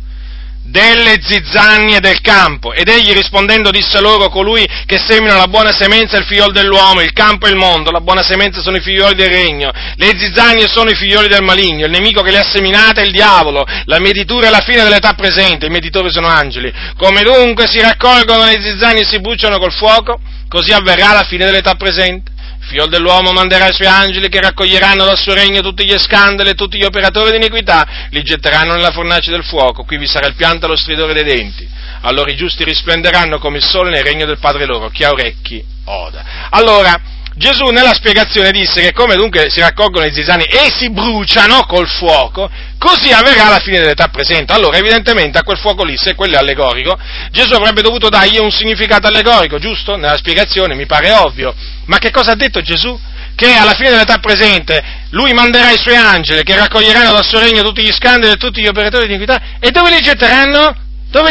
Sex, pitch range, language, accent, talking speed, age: male, 175-225 Hz, Italian, native, 205 wpm, 40-59